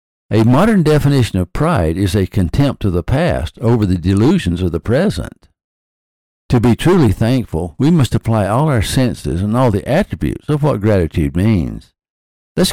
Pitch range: 90-120 Hz